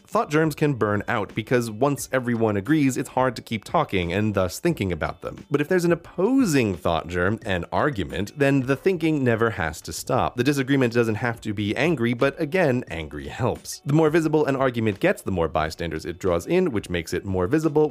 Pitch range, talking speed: 110-150 Hz, 210 wpm